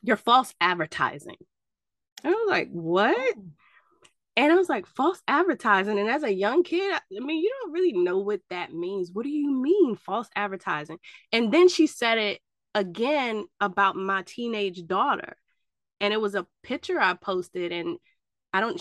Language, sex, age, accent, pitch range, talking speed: English, female, 20-39, American, 185-310 Hz, 170 wpm